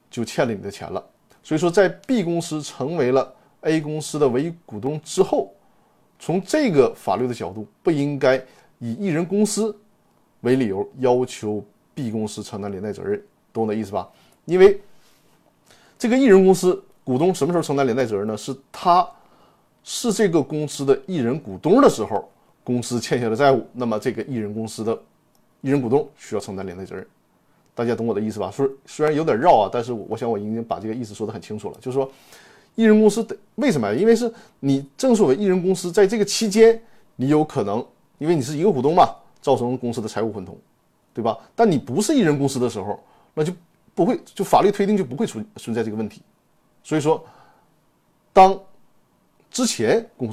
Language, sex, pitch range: Chinese, male, 115-190 Hz